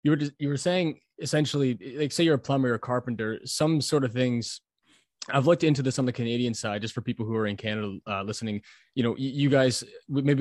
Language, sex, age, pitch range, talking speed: English, male, 20-39, 105-130 Hz, 235 wpm